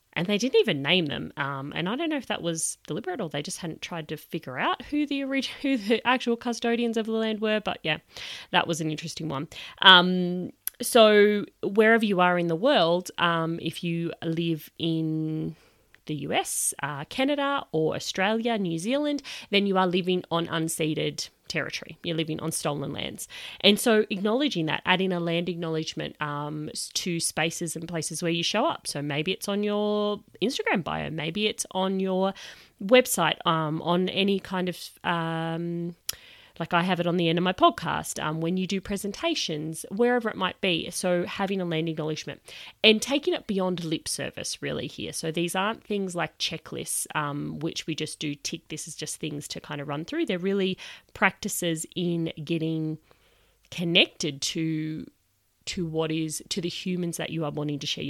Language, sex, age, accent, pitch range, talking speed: English, female, 30-49, Australian, 160-210 Hz, 190 wpm